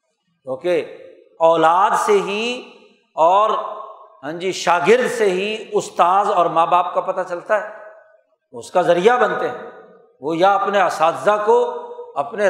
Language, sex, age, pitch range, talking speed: Urdu, male, 60-79, 185-265 Hz, 140 wpm